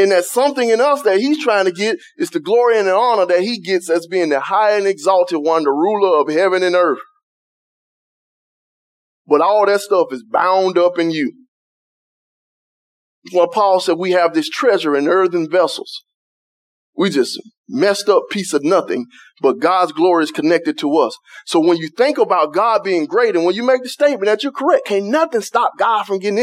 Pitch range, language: 180-295 Hz, English